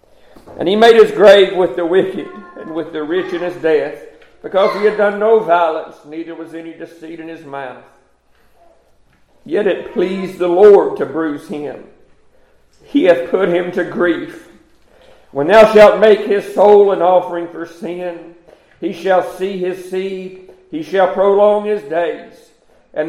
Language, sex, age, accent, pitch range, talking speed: English, male, 50-69, American, 165-205 Hz, 165 wpm